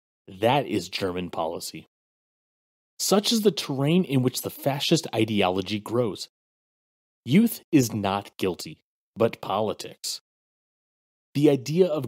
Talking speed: 115 wpm